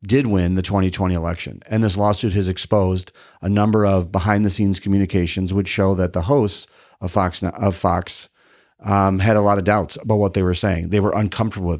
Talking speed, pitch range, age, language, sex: 190 wpm, 95-105 Hz, 40-59, English, male